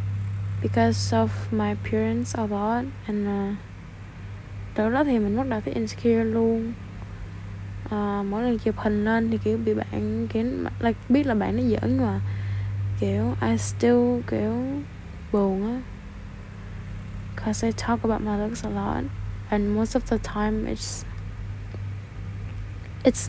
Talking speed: 135 wpm